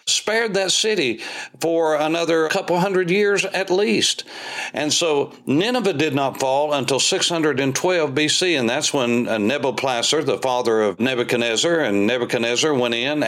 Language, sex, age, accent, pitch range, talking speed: English, male, 60-79, American, 115-165 Hz, 140 wpm